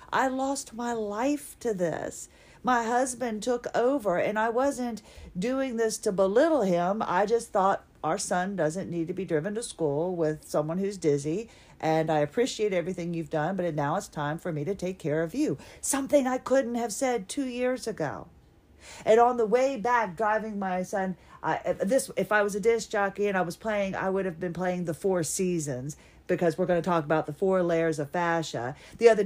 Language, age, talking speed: English, 50-69, 205 wpm